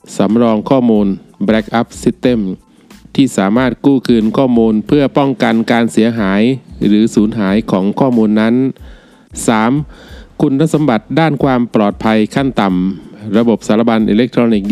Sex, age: male, 20-39